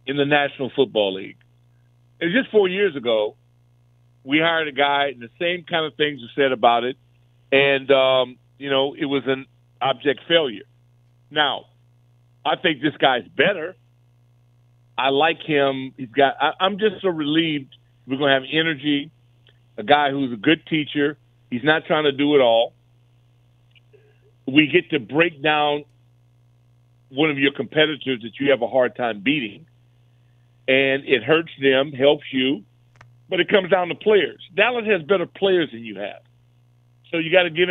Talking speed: 170 wpm